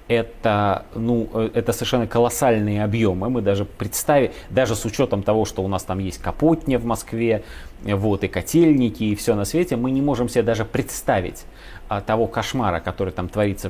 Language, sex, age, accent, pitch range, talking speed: Russian, male, 30-49, native, 95-125 Hz, 170 wpm